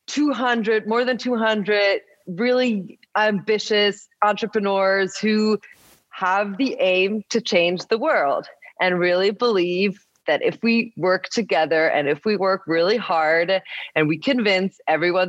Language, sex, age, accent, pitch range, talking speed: English, female, 20-39, American, 175-220 Hz, 130 wpm